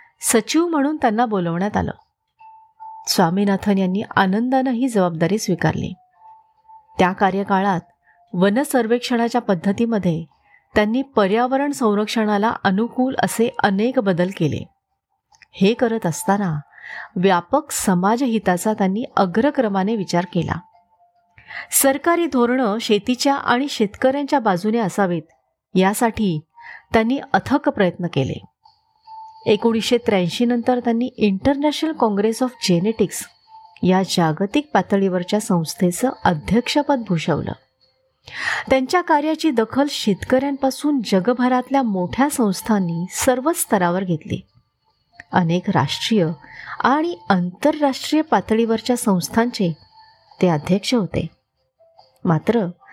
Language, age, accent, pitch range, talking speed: Marathi, 30-49, native, 190-275 Hz, 90 wpm